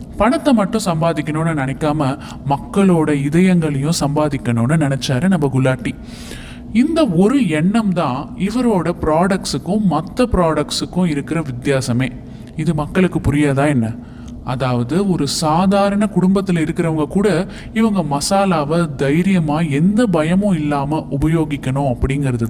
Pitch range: 140-190 Hz